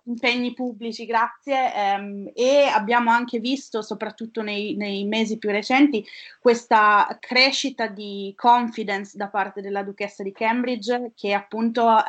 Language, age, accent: Italian, 20-39, native